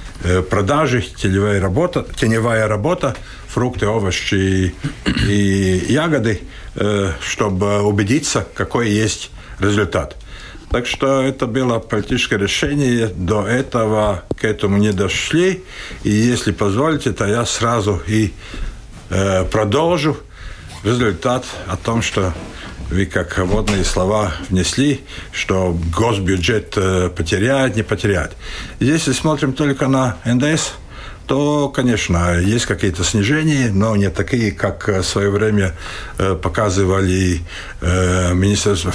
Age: 60-79